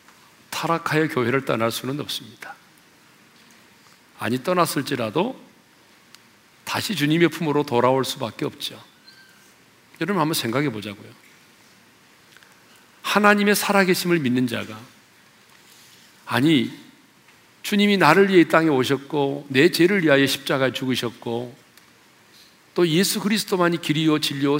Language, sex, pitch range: Korean, male, 130-180 Hz